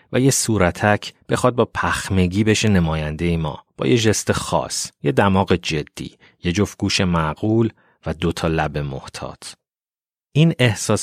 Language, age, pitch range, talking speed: Persian, 30-49, 85-105 Hz, 145 wpm